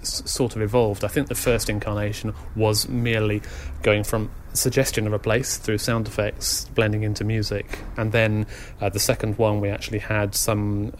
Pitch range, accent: 105-120 Hz, British